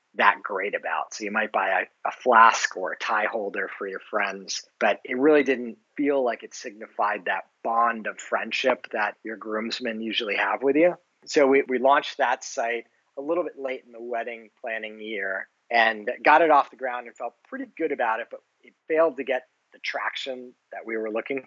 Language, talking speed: English, 205 wpm